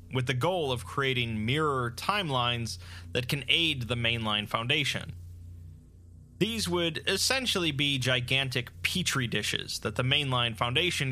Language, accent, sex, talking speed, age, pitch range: English, American, male, 130 wpm, 30-49, 110-145 Hz